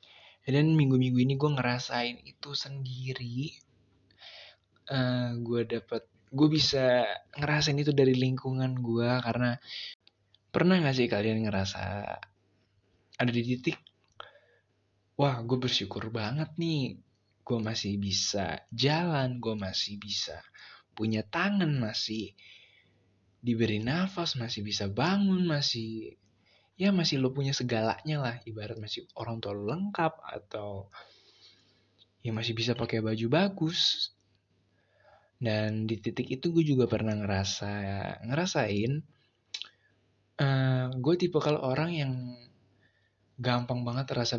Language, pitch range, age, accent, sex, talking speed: Indonesian, 105-130 Hz, 20-39, native, male, 110 wpm